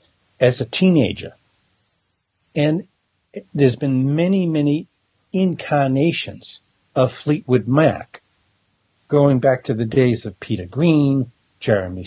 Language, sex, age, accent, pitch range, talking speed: English, male, 60-79, American, 110-145 Hz, 105 wpm